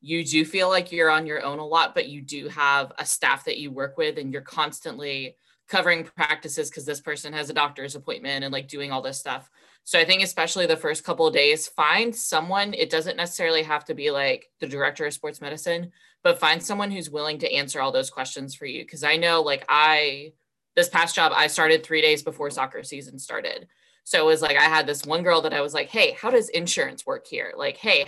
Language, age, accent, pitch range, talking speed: English, 20-39, American, 145-185 Hz, 235 wpm